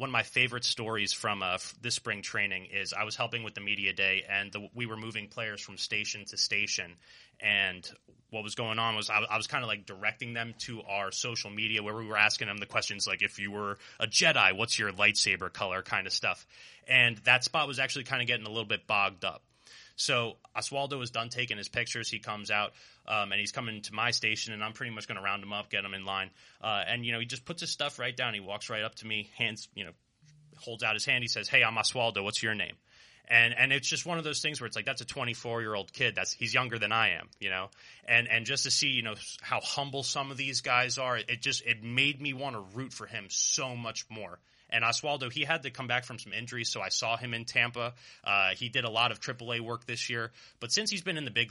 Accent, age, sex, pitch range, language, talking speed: American, 30-49, male, 105-130 Hz, English, 260 wpm